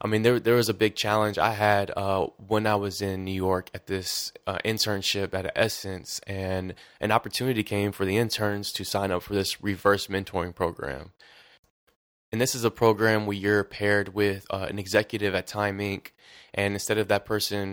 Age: 20-39